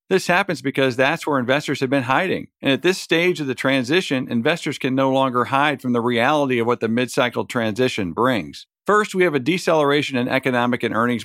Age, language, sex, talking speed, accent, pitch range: 50-69, English, male, 210 wpm, American, 120-155 Hz